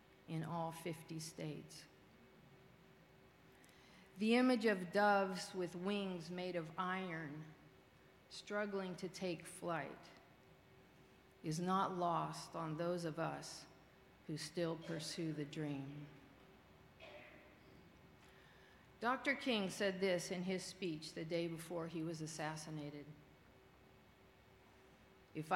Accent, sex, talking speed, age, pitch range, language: American, female, 100 wpm, 50-69, 165-205 Hz, English